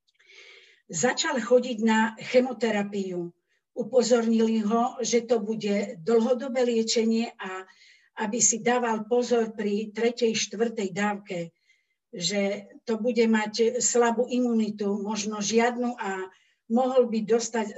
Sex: female